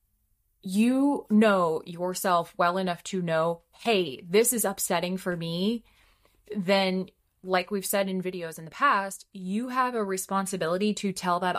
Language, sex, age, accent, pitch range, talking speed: English, female, 20-39, American, 175-215 Hz, 150 wpm